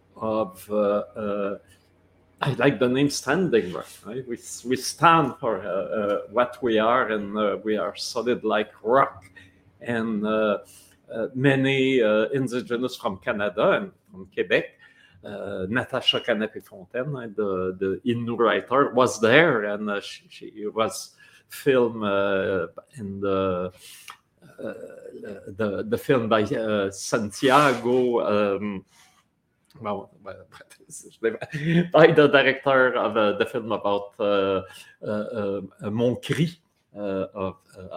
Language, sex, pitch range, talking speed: French, male, 95-130 Hz, 125 wpm